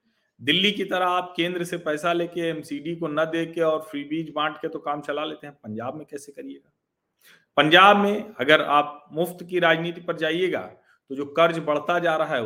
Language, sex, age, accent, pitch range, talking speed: Hindi, male, 40-59, native, 135-175 Hz, 200 wpm